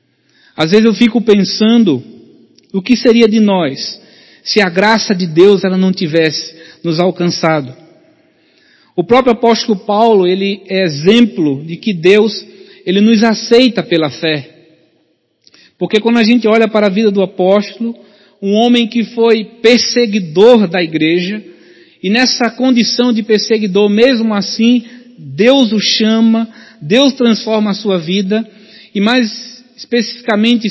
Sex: male